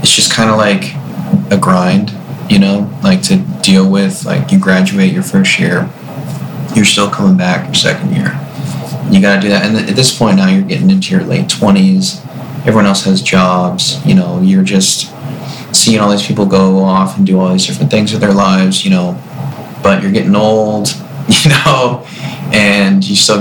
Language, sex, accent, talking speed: English, male, American, 190 wpm